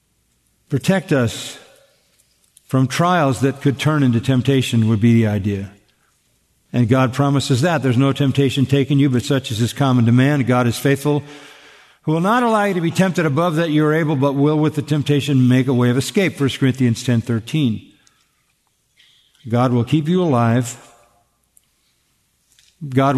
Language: English